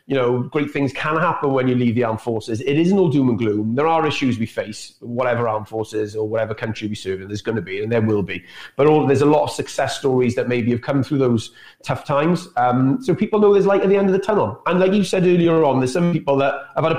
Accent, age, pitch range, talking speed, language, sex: British, 30-49, 125-165 Hz, 285 wpm, English, male